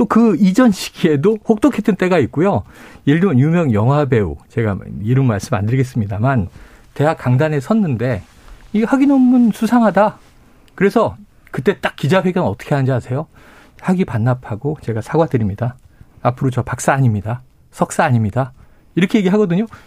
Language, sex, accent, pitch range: Korean, male, native, 120-200 Hz